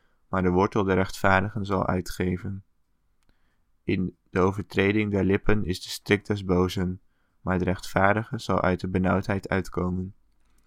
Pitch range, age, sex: 90-100 Hz, 20-39, male